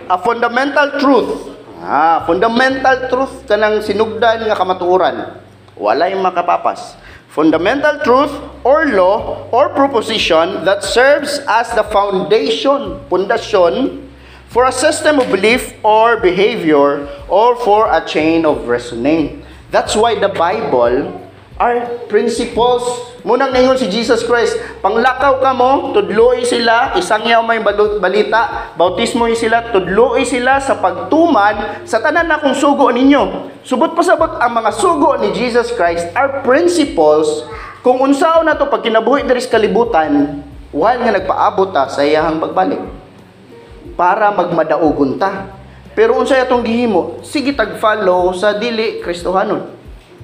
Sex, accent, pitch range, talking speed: male, native, 195-270 Hz, 125 wpm